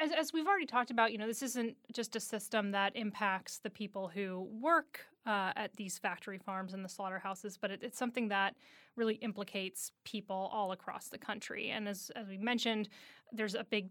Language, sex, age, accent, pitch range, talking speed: English, female, 30-49, American, 195-235 Hz, 195 wpm